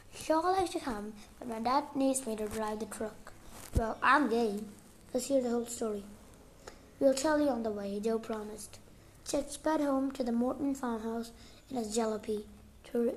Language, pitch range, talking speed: English, 215-275 Hz, 180 wpm